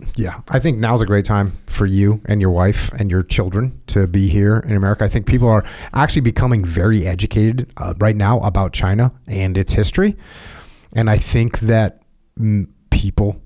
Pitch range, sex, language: 95-120 Hz, male, English